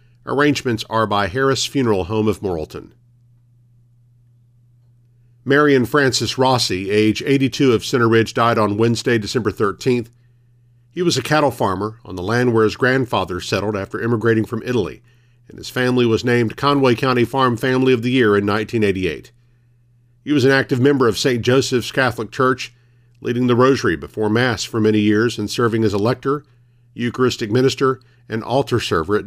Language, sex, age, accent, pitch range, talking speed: English, male, 50-69, American, 115-130 Hz, 165 wpm